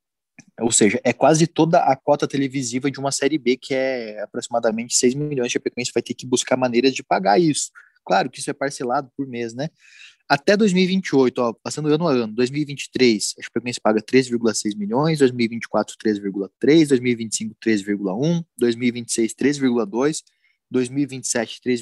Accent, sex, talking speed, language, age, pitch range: Brazilian, male, 140 wpm, Portuguese, 20-39, 120-145 Hz